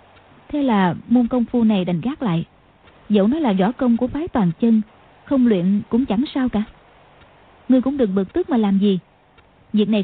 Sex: female